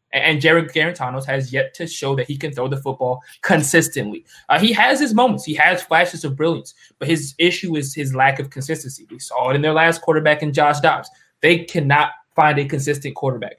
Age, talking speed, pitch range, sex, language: 20-39, 210 wpm, 135-160 Hz, male, English